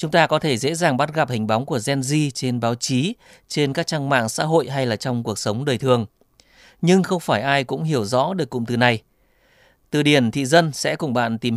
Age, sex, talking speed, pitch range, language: 20-39, male, 250 wpm, 120-155 Hz, Vietnamese